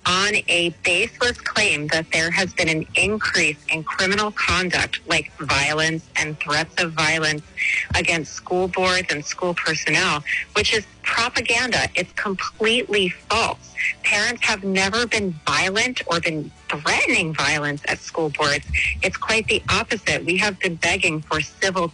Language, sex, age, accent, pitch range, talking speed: English, female, 30-49, American, 150-195 Hz, 145 wpm